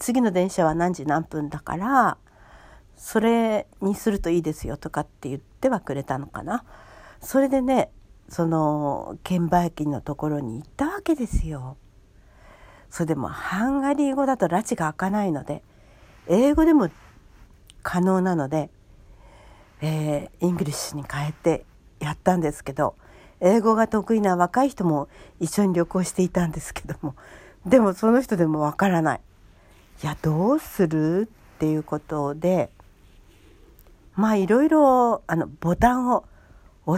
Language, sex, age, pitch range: Japanese, female, 60-79, 145-235 Hz